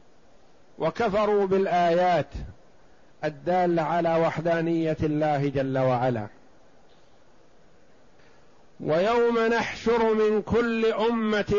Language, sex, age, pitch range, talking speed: Arabic, male, 50-69, 155-205 Hz, 65 wpm